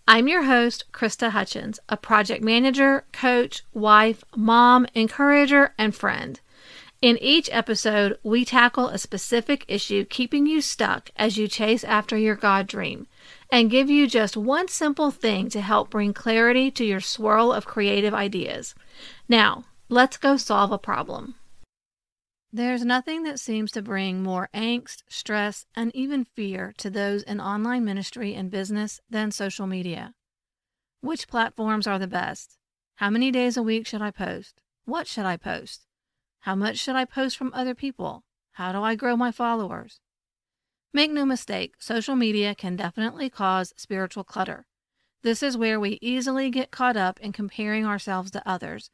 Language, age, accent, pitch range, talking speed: English, 40-59, American, 205-250 Hz, 160 wpm